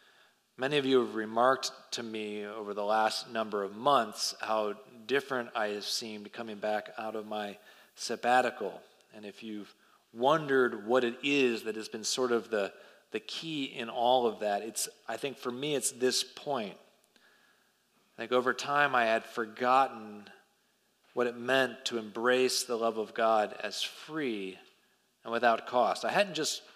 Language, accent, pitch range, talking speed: English, American, 110-135 Hz, 170 wpm